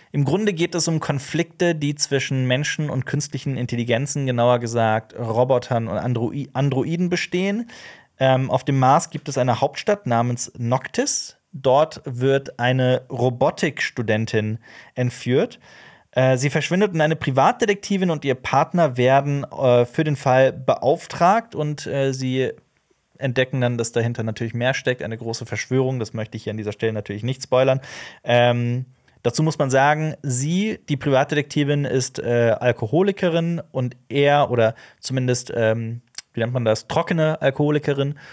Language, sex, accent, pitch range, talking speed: German, male, German, 120-150 Hz, 145 wpm